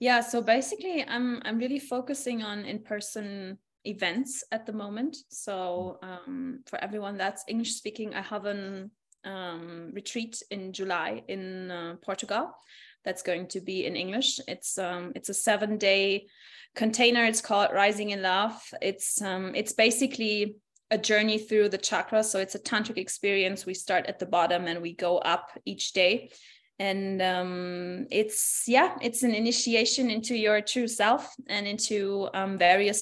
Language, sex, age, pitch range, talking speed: English, female, 20-39, 195-250 Hz, 155 wpm